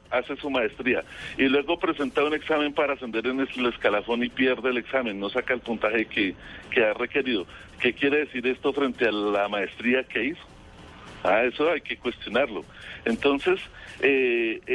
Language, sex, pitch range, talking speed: Spanish, male, 120-145 Hz, 170 wpm